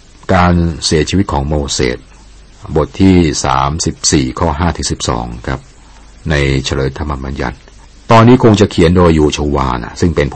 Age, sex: 60-79, male